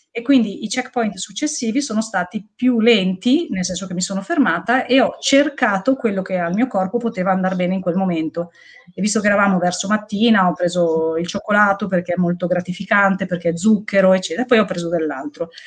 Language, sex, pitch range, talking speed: Italian, female, 180-235 Hz, 195 wpm